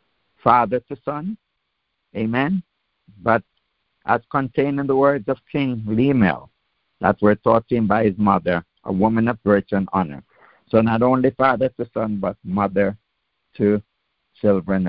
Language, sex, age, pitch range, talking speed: English, male, 60-79, 100-130 Hz, 150 wpm